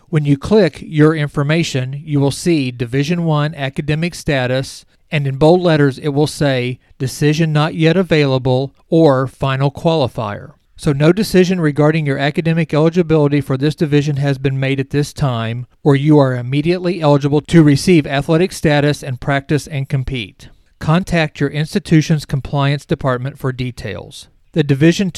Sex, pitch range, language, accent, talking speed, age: male, 135-160 Hz, English, American, 155 wpm, 40-59